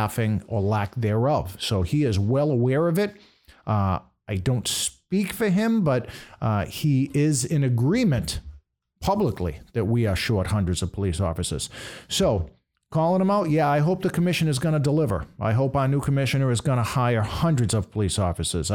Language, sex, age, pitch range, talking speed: English, male, 50-69, 105-135 Hz, 180 wpm